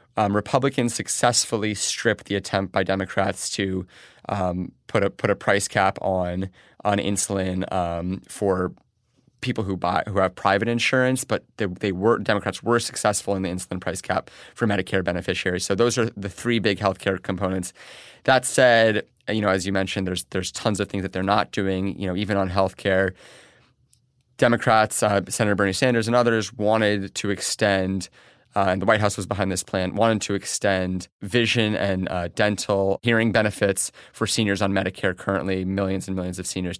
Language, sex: English, male